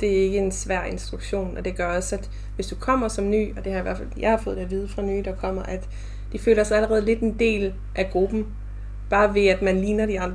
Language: Danish